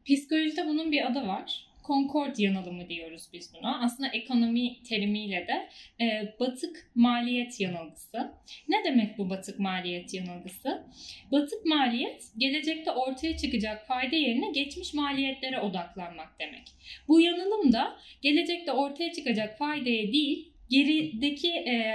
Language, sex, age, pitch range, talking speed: Turkish, female, 10-29, 210-300 Hz, 120 wpm